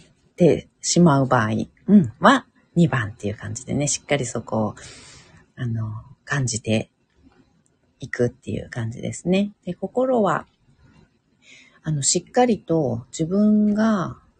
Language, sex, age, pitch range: Japanese, female, 40-59, 125-190 Hz